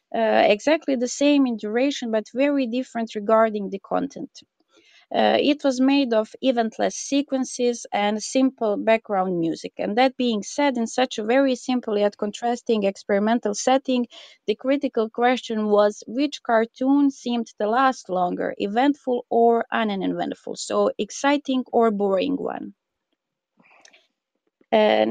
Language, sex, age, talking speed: English, female, 20-39, 130 wpm